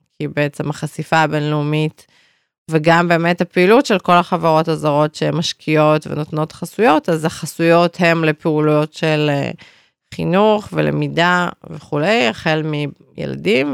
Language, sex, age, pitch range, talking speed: Hebrew, female, 30-49, 150-170 Hz, 105 wpm